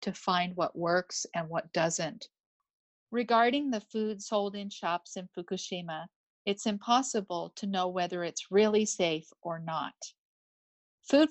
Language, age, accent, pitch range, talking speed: English, 50-69, American, 170-210 Hz, 140 wpm